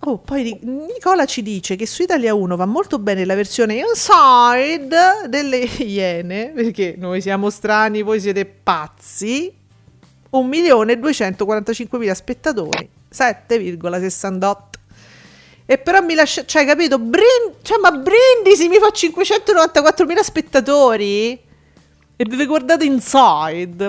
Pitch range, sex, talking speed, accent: 195-285 Hz, female, 115 wpm, native